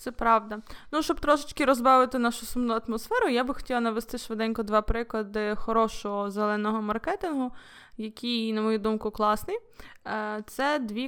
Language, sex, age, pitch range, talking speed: Ukrainian, female, 20-39, 210-235 Hz, 140 wpm